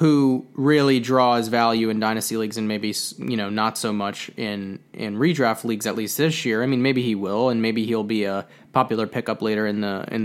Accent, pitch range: American, 110-135 Hz